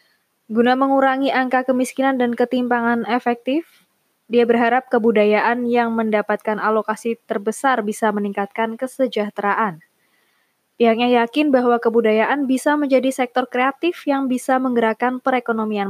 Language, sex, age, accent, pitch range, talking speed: Indonesian, female, 20-39, native, 210-255 Hz, 110 wpm